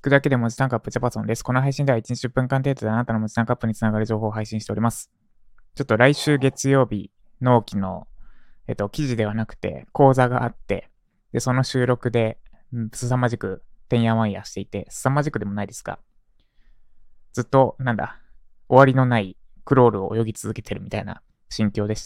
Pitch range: 110-130 Hz